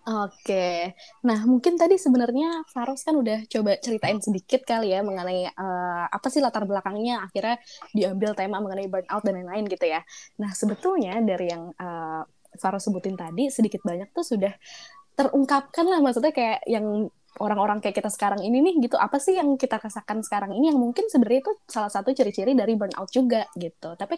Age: 20-39